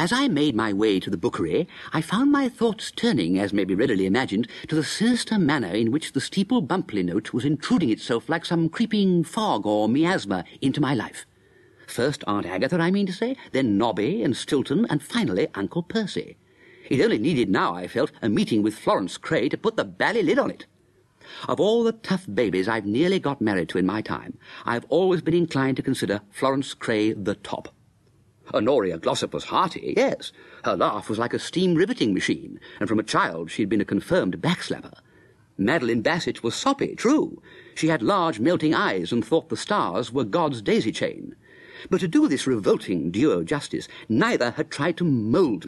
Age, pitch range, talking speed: 50-69, 135-225 Hz, 195 wpm